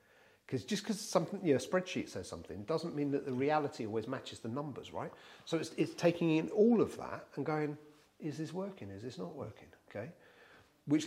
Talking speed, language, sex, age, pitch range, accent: 205 wpm, English, male, 40-59, 120-155 Hz, British